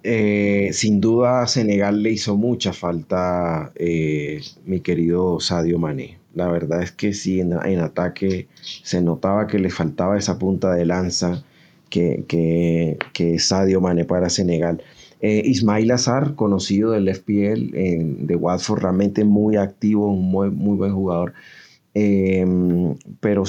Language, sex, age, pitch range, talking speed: Spanish, male, 30-49, 90-110 Hz, 145 wpm